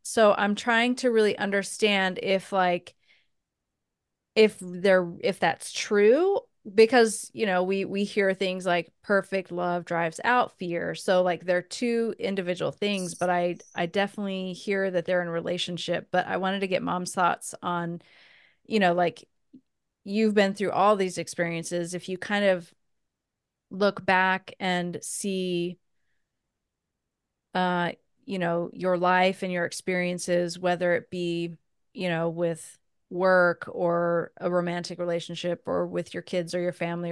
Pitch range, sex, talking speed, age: 175-200 Hz, female, 150 wpm, 30-49